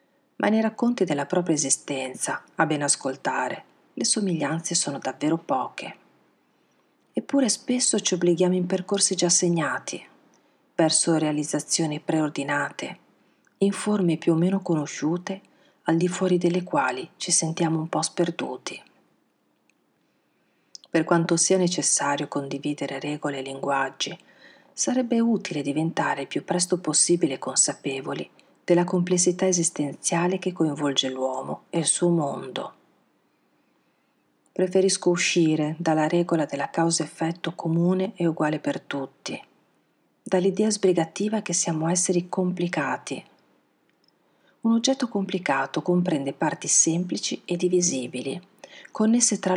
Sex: female